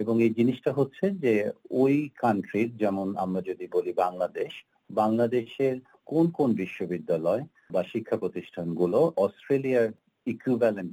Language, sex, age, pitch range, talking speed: Bengali, male, 50-69, 95-125 Hz, 115 wpm